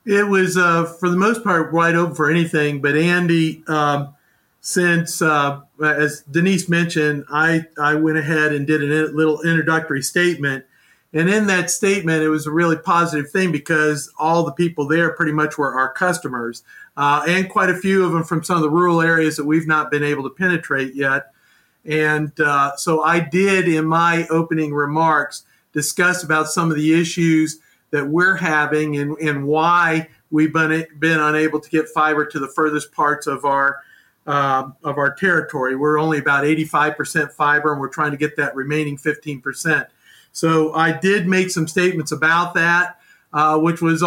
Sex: male